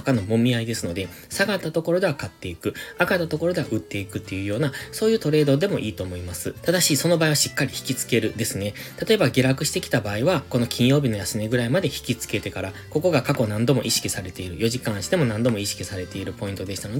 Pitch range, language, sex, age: 105-150 Hz, Japanese, male, 20-39